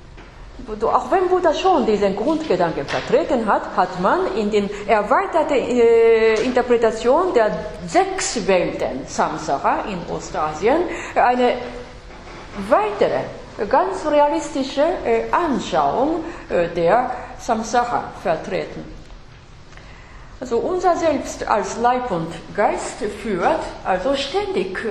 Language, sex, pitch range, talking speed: English, female, 215-295 Hz, 90 wpm